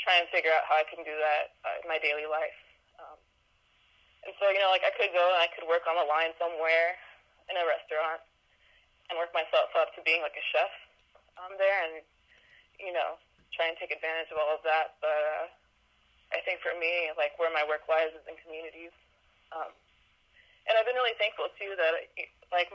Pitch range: 150-175 Hz